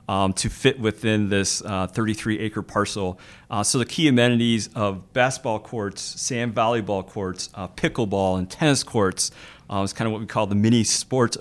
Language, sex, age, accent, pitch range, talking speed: English, male, 40-59, American, 105-125 Hz, 180 wpm